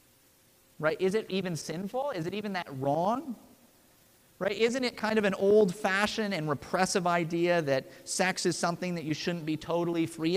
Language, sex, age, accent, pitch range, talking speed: English, male, 30-49, American, 160-210 Hz, 175 wpm